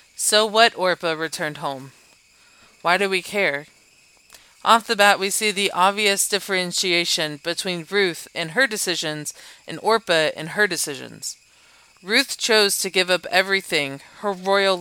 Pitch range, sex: 170-210 Hz, female